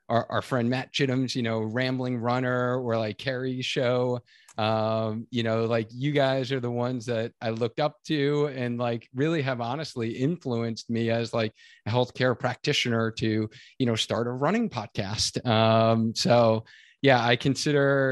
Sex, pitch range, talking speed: male, 115-140 Hz, 170 wpm